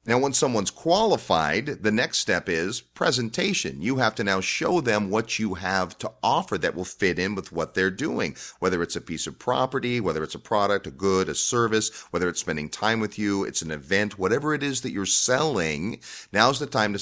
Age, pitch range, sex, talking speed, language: 40-59, 95-130 Hz, male, 215 wpm, English